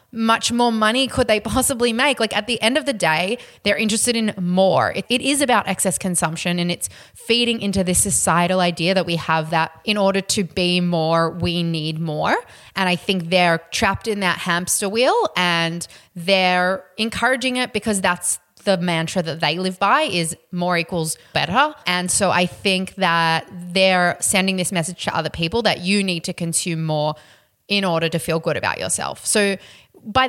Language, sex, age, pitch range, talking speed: English, female, 20-39, 165-205 Hz, 190 wpm